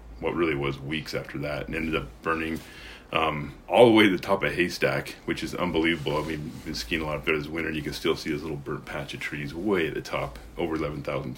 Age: 30-49